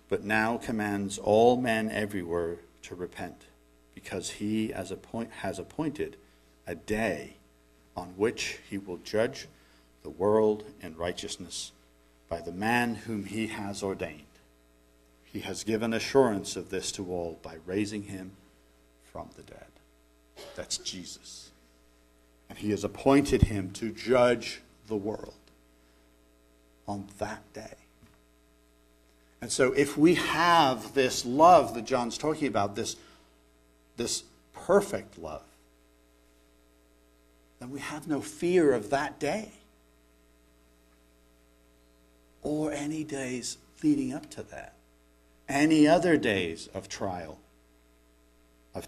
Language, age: English, 60-79